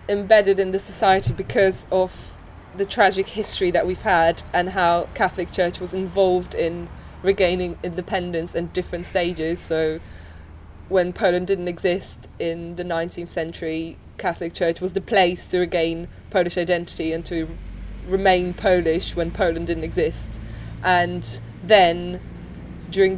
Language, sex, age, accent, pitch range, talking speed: English, female, 20-39, British, 170-190 Hz, 135 wpm